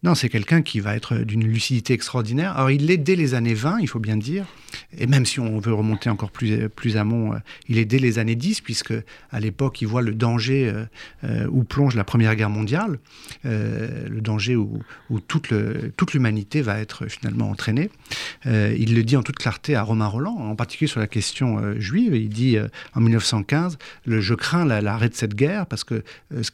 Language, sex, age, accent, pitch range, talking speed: French, male, 50-69, French, 110-140 Hz, 215 wpm